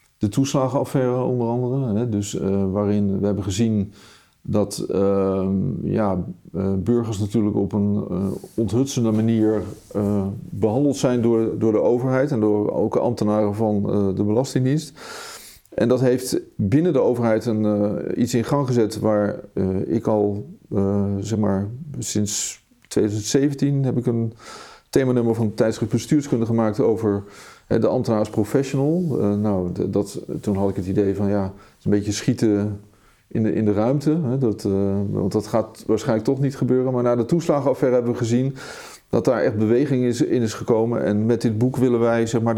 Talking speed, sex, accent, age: 160 wpm, male, Dutch, 40-59